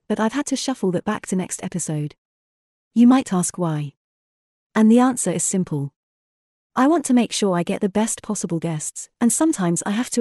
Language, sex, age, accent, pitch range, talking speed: English, female, 30-49, British, 170-225 Hz, 205 wpm